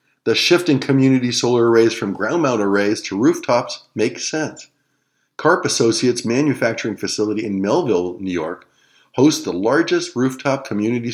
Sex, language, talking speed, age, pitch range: male, English, 140 wpm, 50-69, 110-140 Hz